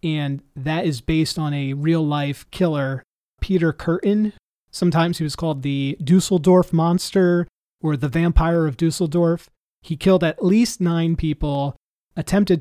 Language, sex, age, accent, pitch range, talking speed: English, male, 30-49, American, 145-170 Hz, 140 wpm